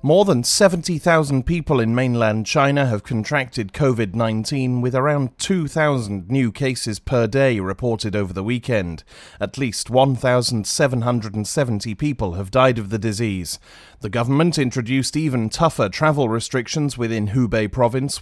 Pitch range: 110-135 Hz